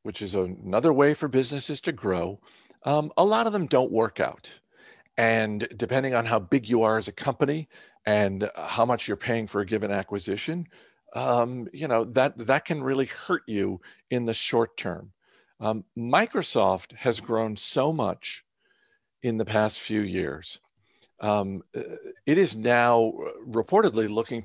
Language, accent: English, American